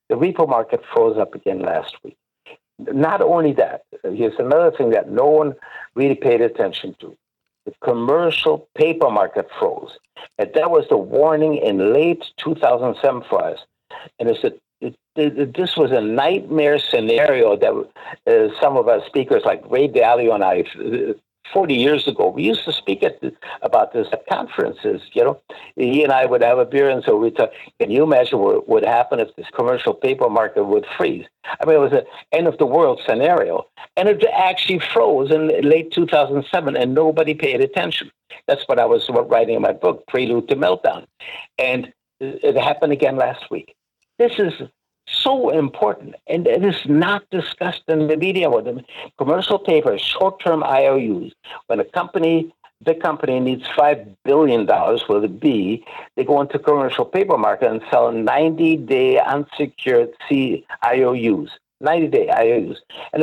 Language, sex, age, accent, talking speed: English, male, 60-79, American, 170 wpm